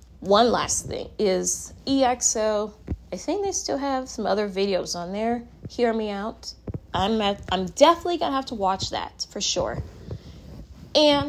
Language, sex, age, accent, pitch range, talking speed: English, female, 20-39, American, 200-270 Hz, 160 wpm